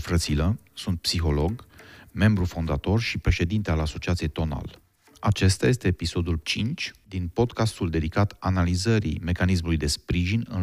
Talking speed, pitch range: 125 wpm, 80-100 Hz